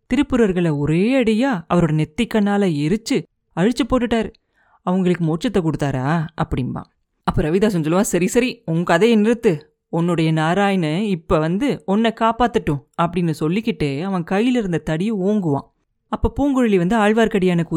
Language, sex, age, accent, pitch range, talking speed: Tamil, female, 30-49, native, 165-220 Hz, 120 wpm